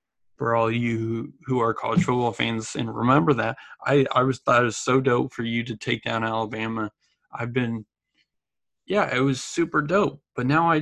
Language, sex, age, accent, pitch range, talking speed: English, male, 20-39, American, 110-135 Hz, 195 wpm